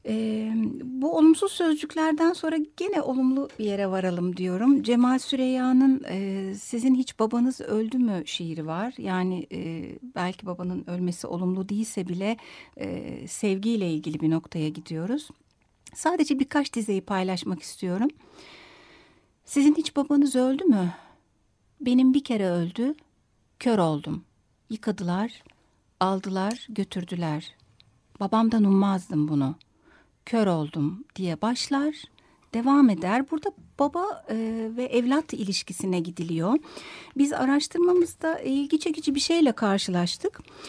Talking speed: 110 wpm